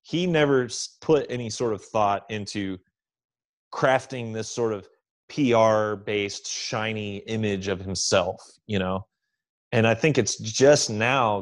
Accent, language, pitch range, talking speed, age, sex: American, English, 100-120 Hz, 135 wpm, 30-49, male